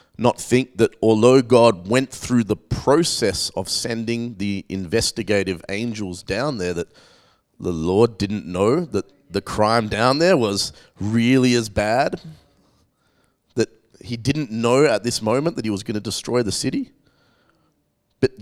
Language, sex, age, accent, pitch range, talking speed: English, male, 30-49, Australian, 105-145 Hz, 150 wpm